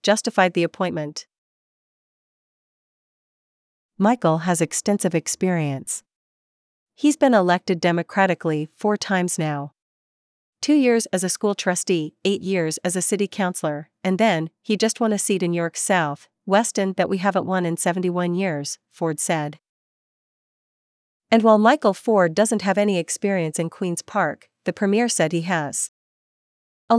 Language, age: English, 40-59